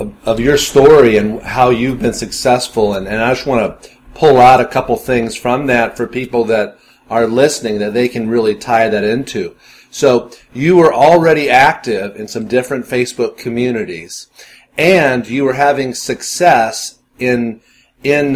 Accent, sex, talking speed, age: American, male, 165 wpm, 40-59